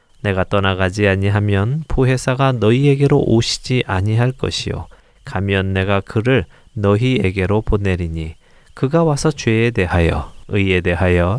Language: Korean